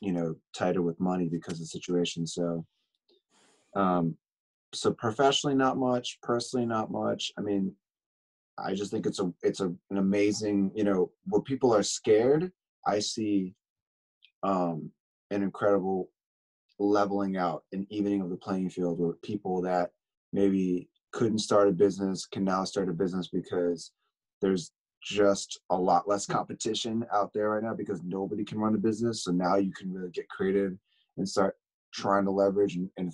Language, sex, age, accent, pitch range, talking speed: English, male, 20-39, American, 90-105 Hz, 165 wpm